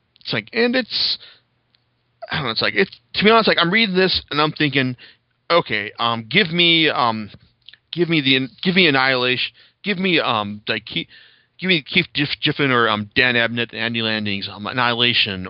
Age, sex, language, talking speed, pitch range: 30-49, male, English, 180 wpm, 110-150 Hz